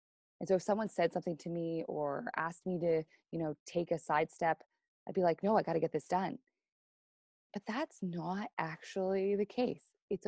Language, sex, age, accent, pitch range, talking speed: English, female, 20-39, American, 155-195 Hz, 200 wpm